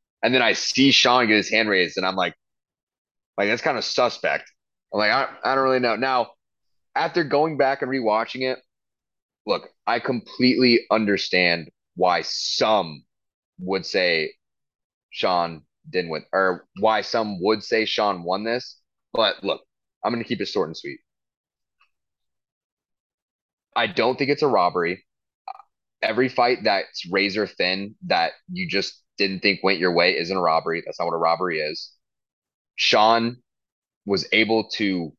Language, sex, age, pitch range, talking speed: English, male, 30-49, 95-125 Hz, 160 wpm